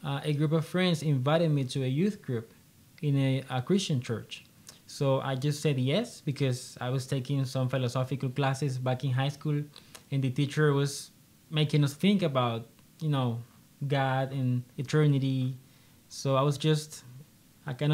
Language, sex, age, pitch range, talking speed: English, male, 20-39, 130-155 Hz, 165 wpm